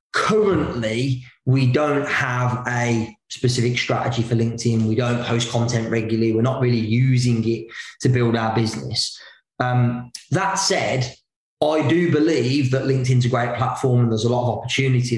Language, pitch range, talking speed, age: English, 120-135 Hz, 160 wpm, 20-39